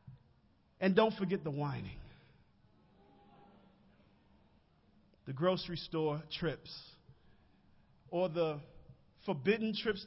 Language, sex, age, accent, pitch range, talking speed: English, male, 40-59, American, 165-270 Hz, 75 wpm